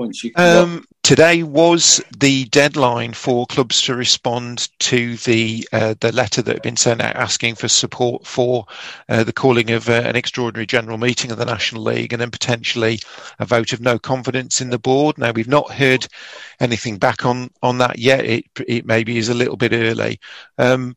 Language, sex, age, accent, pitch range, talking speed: English, male, 40-59, British, 110-130 Hz, 190 wpm